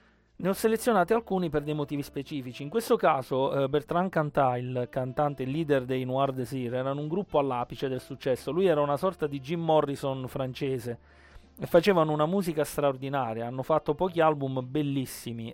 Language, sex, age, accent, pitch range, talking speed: Italian, male, 30-49, native, 130-150 Hz, 170 wpm